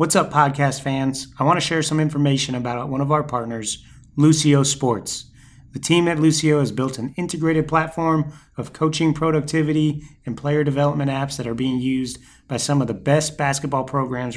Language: English